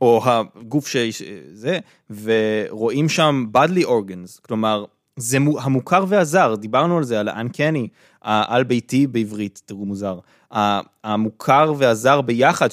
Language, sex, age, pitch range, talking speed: Hebrew, male, 20-39, 115-175 Hz, 110 wpm